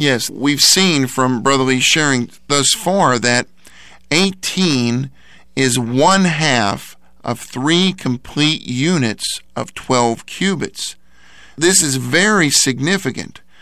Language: English